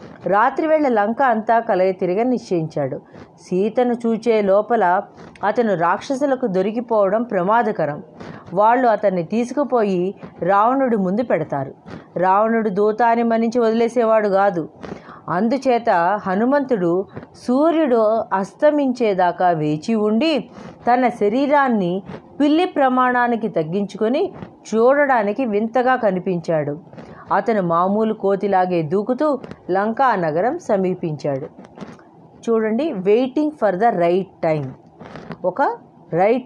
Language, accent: Telugu, native